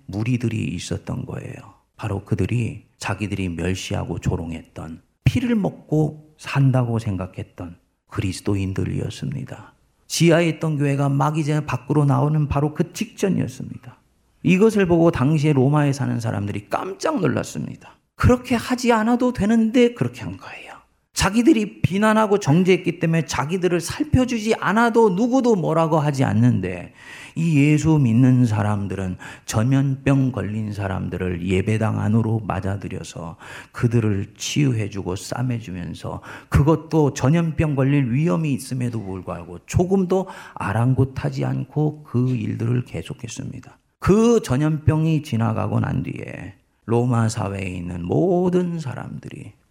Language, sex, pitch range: Korean, male, 110-160 Hz